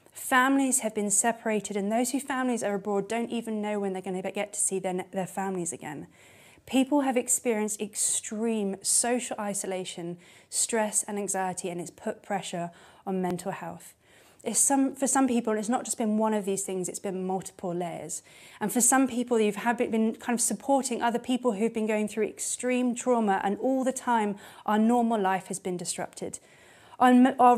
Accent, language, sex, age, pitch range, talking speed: British, English, female, 20-39, 200-250 Hz, 185 wpm